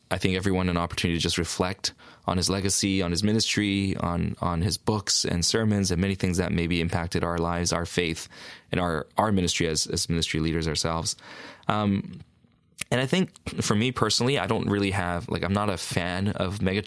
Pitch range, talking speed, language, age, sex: 85-105 Hz, 205 wpm, English, 20-39, male